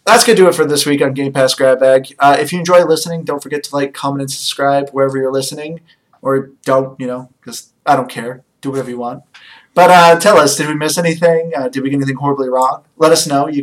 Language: English